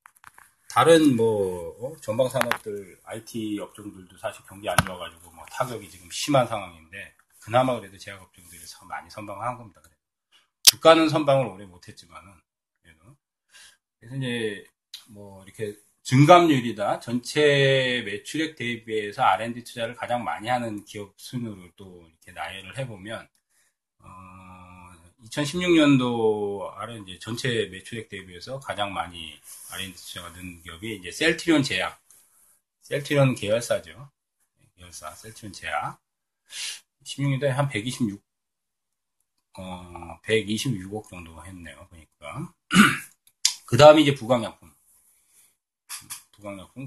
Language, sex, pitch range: Korean, male, 95-130 Hz